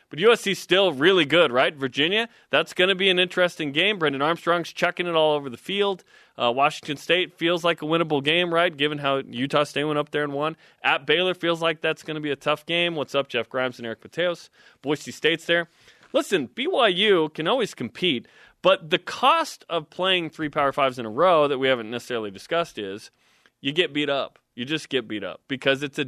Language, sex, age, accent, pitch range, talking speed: English, male, 20-39, American, 130-170 Hz, 220 wpm